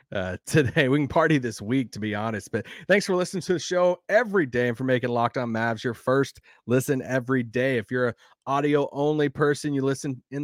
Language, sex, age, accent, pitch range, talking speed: English, male, 30-49, American, 120-155 Hz, 220 wpm